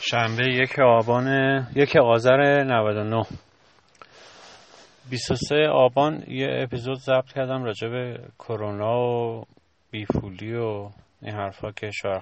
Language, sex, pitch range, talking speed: Persian, male, 100-125 Hz, 105 wpm